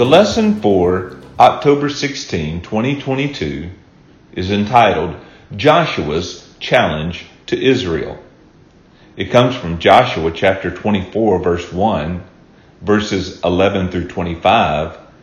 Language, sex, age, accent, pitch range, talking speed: English, male, 40-59, American, 90-125 Hz, 95 wpm